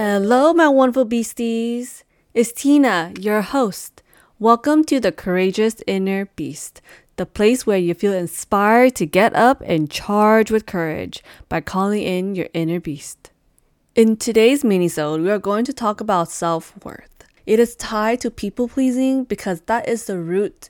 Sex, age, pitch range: female, 20-39, 170-220 Hz